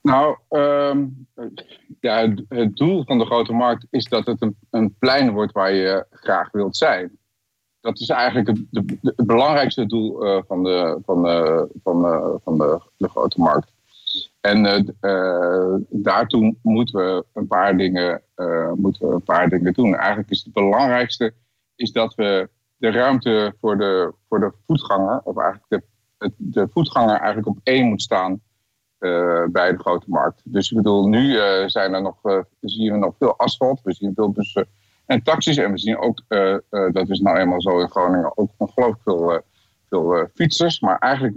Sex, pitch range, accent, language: male, 95-115 Hz, Dutch, Dutch